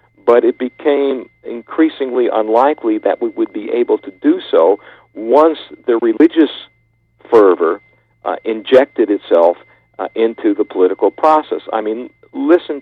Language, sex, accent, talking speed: English, male, American, 130 wpm